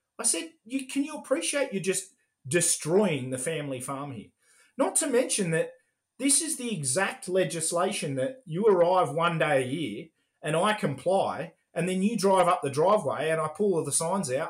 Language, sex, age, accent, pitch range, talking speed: English, male, 30-49, Australian, 145-200 Hz, 185 wpm